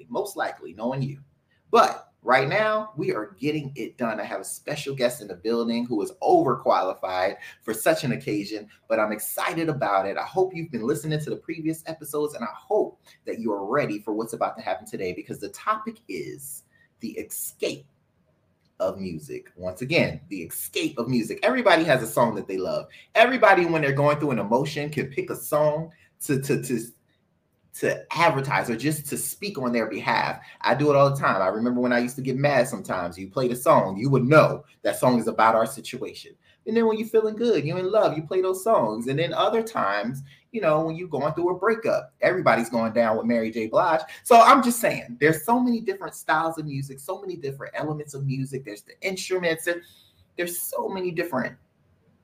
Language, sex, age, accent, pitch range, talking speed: English, male, 30-49, American, 125-190 Hz, 210 wpm